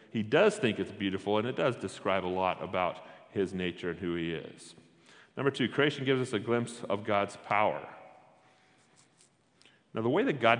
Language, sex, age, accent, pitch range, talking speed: English, male, 40-59, American, 100-140 Hz, 185 wpm